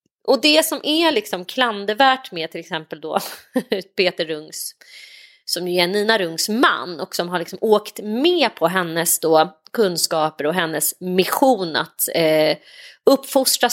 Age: 30-49